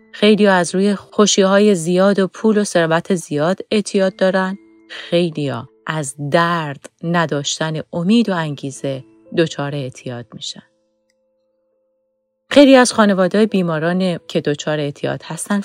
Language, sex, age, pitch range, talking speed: English, female, 30-49, 150-205 Hz, 120 wpm